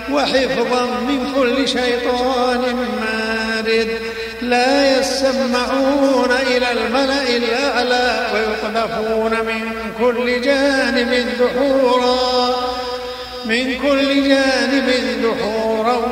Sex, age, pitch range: male, 50-69, 225-255 Hz